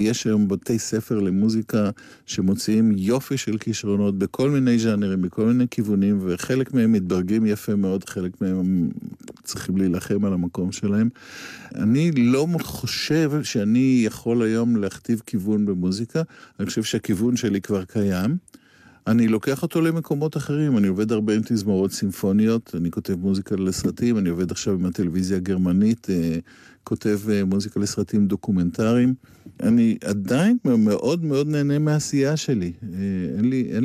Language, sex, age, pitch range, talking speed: Hebrew, male, 50-69, 95-125 Hz, 135 wpm